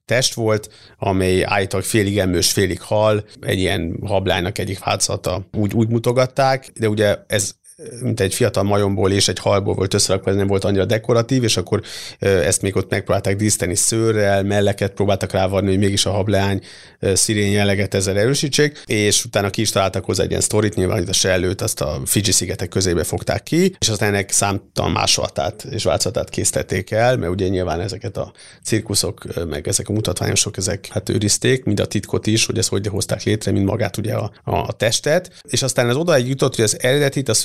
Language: Hungarian